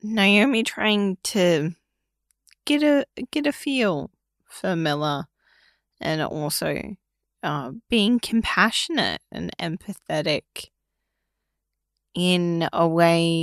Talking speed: 90 wpm